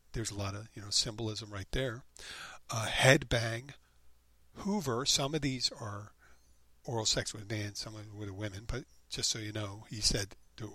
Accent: American